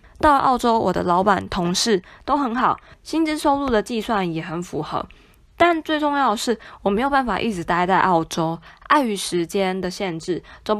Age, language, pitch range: 20-39, Chinese, 175-225 Hz